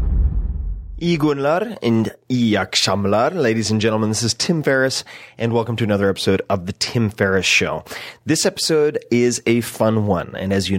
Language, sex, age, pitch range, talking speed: English, male, 30-49, 100-125 Hz, 160 wpm